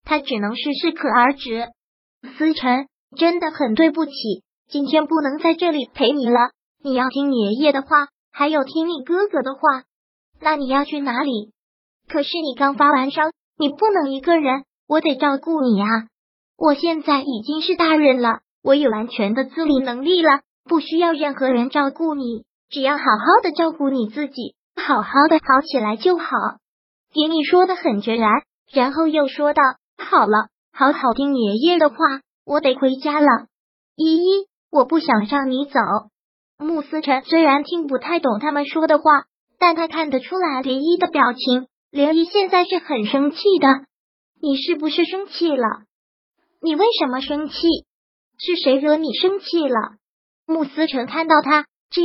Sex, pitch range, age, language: male, 265-325 Hz, 20-39, Chinese